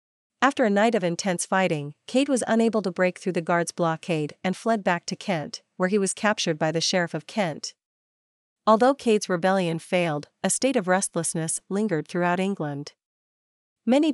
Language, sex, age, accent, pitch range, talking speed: German, female, 40-59, American, 165-205 Hz, 175 wpm